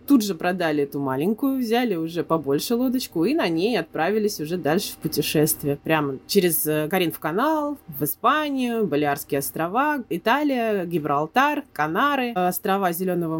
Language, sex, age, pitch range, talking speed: Russian, female, 20-39, 160-225 Hz, 140 wpm